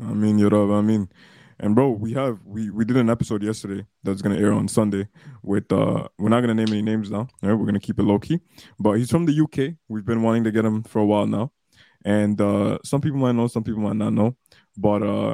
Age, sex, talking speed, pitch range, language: 20-39, male, 270 wpm, 105-120 Hz, English